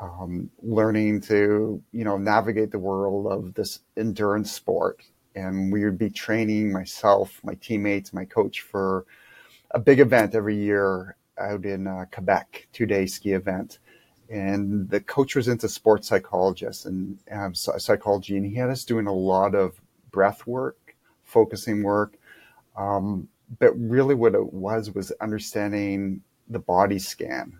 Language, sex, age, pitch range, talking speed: English, male, 40-59, 95-110 Hz, 150 wpm